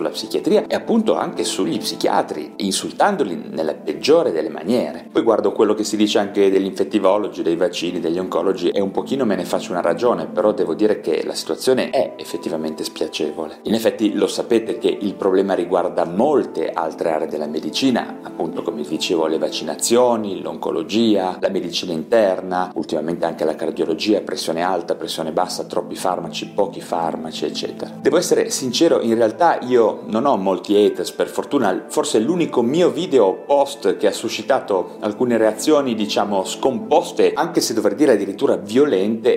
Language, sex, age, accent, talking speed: Italian, male, 30-49, native, 165 wpm